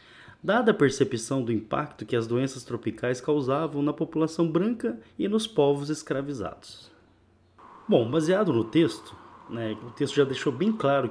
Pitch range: 125-175 Hz